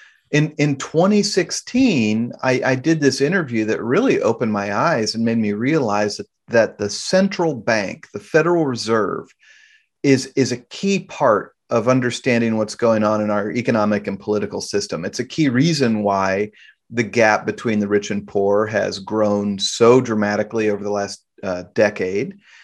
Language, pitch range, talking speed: English, 105-145 Hz, 165 wpm